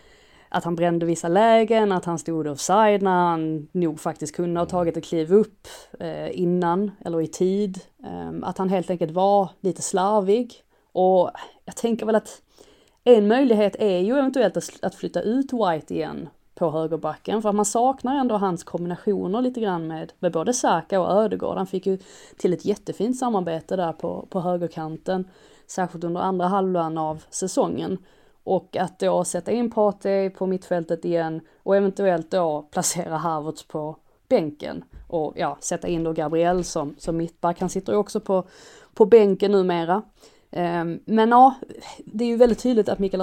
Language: English